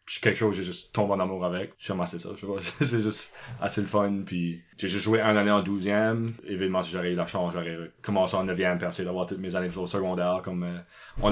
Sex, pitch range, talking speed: male, 100-125 Hz, 240 wpm